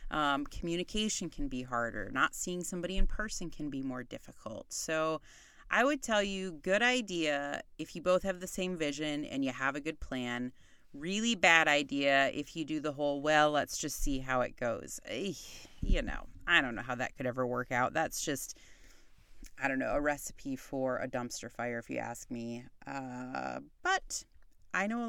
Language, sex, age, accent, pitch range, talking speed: English, female, 30-49, American, 145-195 Hz, 190 wpm